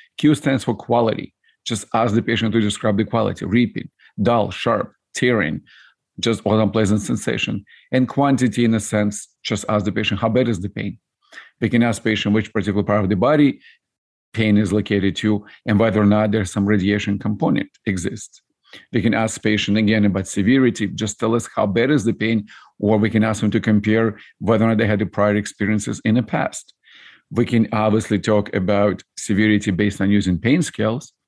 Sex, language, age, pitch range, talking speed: male, English, 50-69, 105-115 Hz, 190 wpm